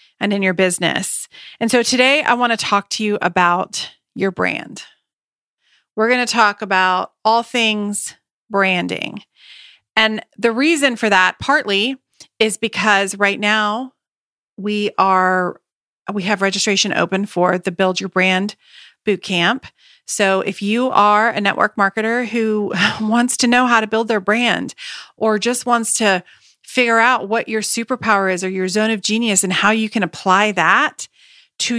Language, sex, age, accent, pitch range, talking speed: English, female, 40-59, American, 195-235 Hz, 160 wpm